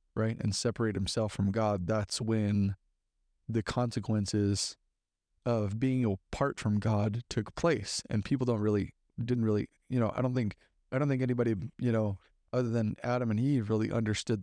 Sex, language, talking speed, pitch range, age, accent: male, English, 170 wpm, 105-125 Hz, 30-49, American